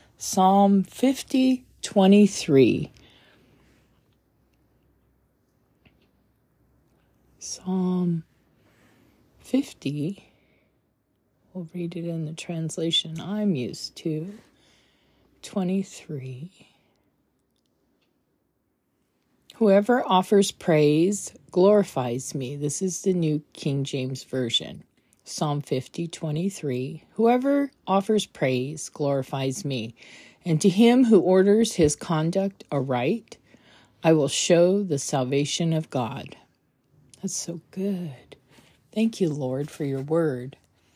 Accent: American